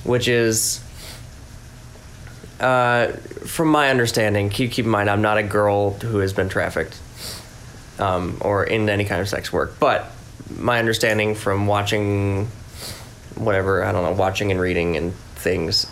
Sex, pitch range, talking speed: male, 105-120 Hz, 150 wpm